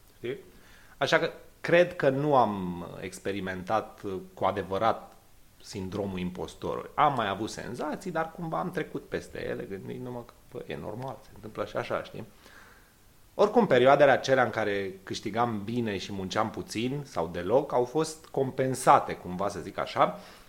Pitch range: 95-135 Hz